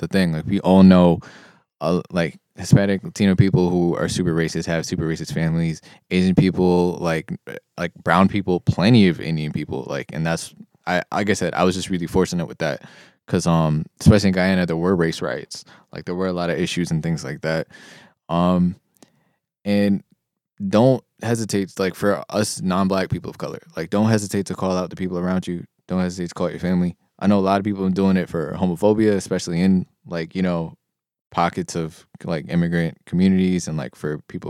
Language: English